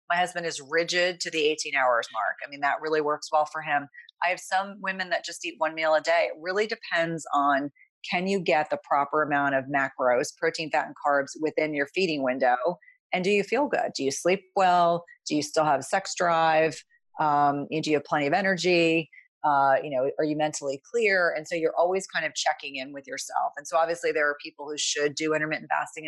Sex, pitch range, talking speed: female, 145-180 Hz, 225 wpm